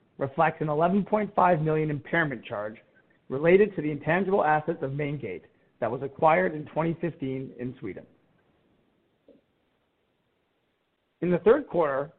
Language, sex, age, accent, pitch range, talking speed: English, male, 50-69, American, 150-195 Hz, 120 wpm